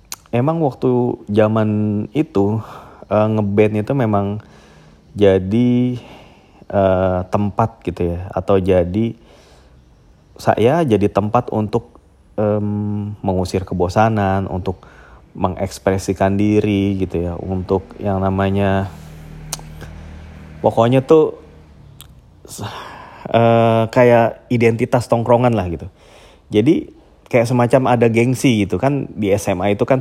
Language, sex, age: Indonesian, male, 30-49